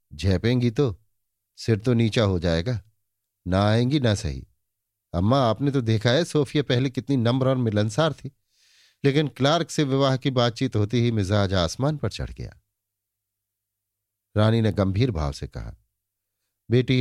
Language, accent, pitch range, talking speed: Hindi, native, 95-120 Hz, 150 wpm